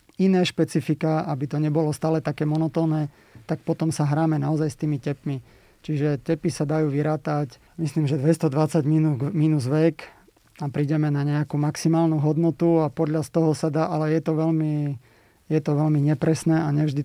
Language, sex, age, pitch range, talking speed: Slovak, male, 30-49, 145-160 Hz, 175 wpm